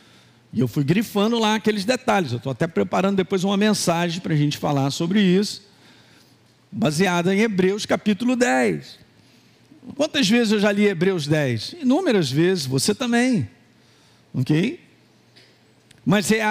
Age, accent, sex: 50-69, Brazilian, male